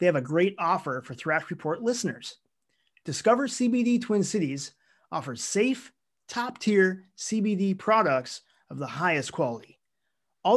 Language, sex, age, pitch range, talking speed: English, male, 30-49, 160-230 Hz, 135 wpm